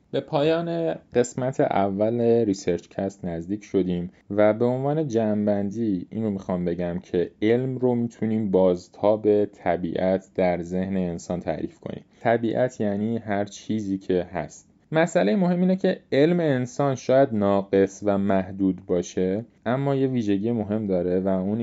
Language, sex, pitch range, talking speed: Persian, male, 90-110 Hz, 145 wpm